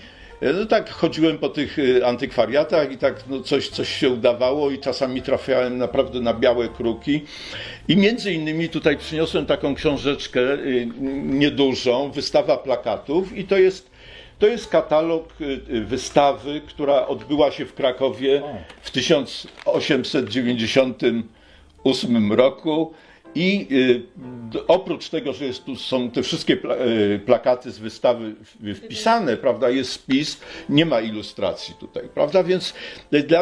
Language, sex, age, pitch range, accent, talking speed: Polish, male, 50-69, 125-170 Hz, native, 120 wpm